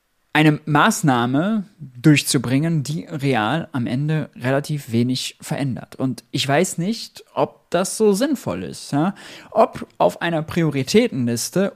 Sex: male